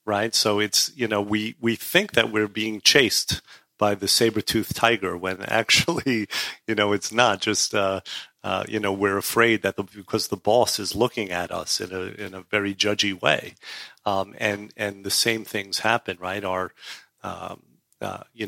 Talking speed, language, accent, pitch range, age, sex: 185 wpm, English, American, 100-120 Hz, 40-59, male